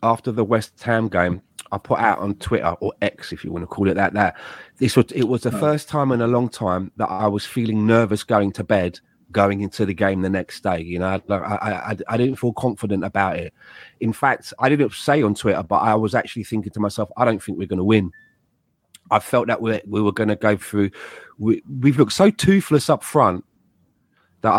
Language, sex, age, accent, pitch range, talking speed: English, male, 30-49, British, 105-140 Hz, 220 wpm